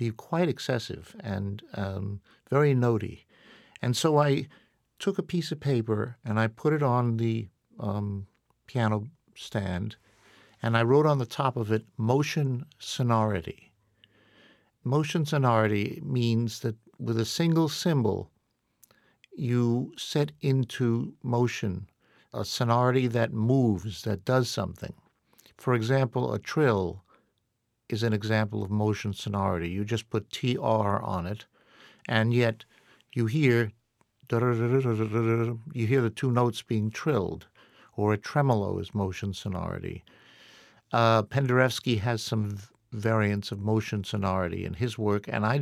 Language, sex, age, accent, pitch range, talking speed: English, male, 60-79, American, 105-130 Hz, 130 wpm